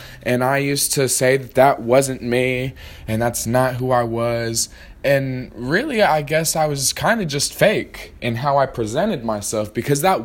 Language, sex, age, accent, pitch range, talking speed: English, male, 20-39, American, 130-170 Hz, 185 wpm